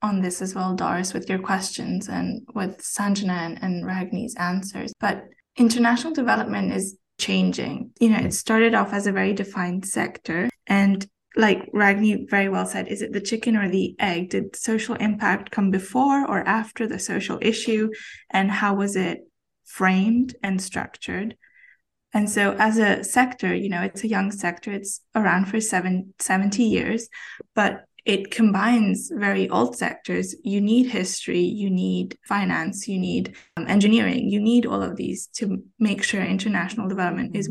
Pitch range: 190-220 Hz